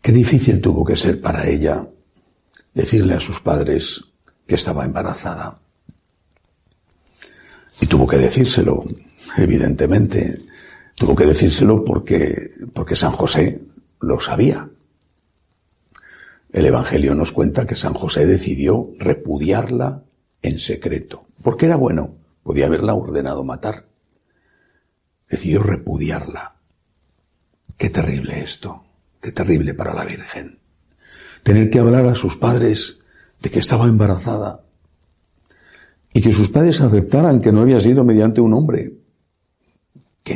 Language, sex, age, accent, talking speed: Spanish, male, 60-79, Spanish, 115 wpm